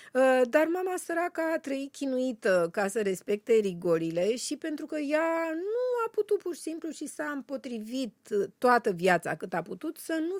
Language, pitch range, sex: Romanian, 190-305 Hz, female